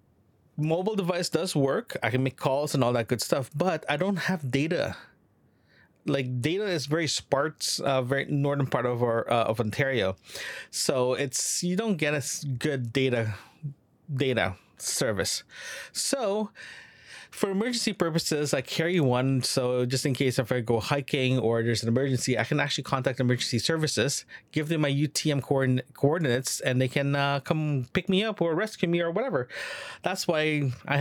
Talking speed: 170 wpm